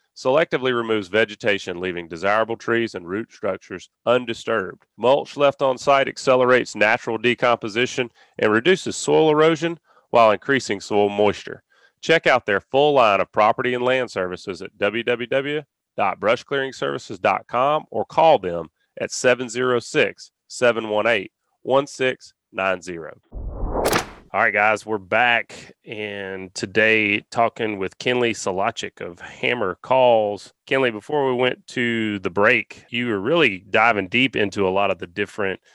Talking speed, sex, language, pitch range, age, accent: 125 wpm, male, English, 105-130 Hz, 30-49, American